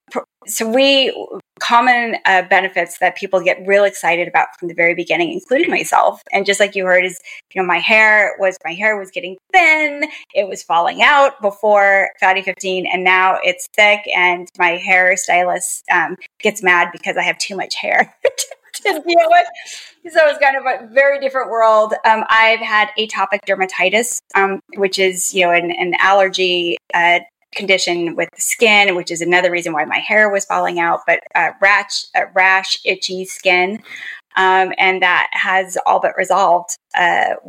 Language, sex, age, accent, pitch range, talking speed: English, female, 10-29, American, 180-225 Hz, 175 wpm